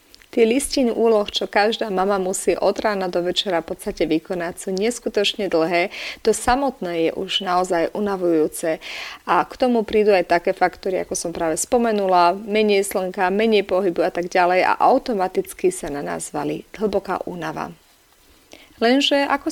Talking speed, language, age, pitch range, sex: 155 wpm, Slovak, 30-49, 190-235 Hz, female